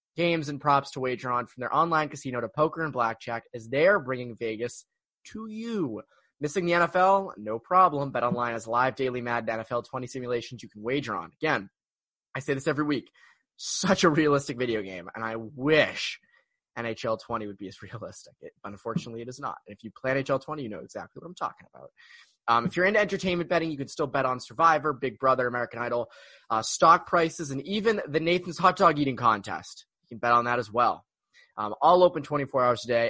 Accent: American